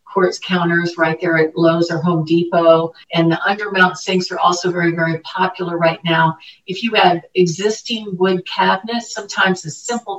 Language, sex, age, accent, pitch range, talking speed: English, female, 50-69, American, 170-210 Hz, 165 wpm